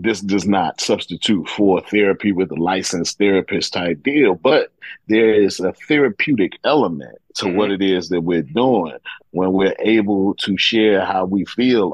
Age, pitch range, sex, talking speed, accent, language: 30-49, 100-130 Hz, male, 165 wpm, American, English